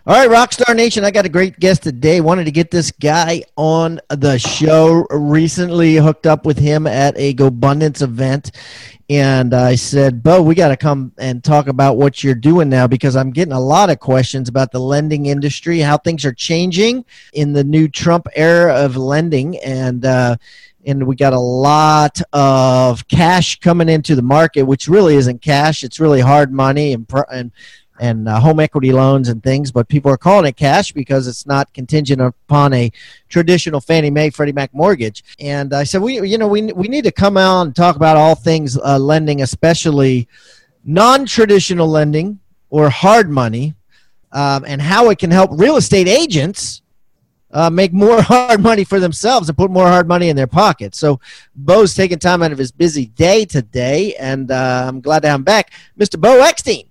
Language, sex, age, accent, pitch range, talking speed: English, male, 40-59, American, 135-175 Hz, 195 wpm